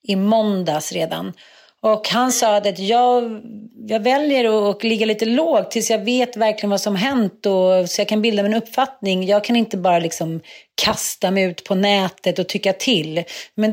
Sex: female